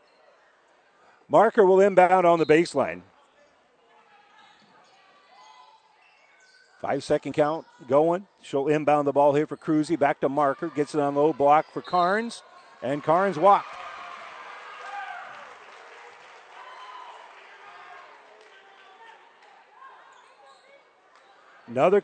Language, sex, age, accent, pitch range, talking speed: English, male, 50-69, American, 150-205 Hz, 85 wpm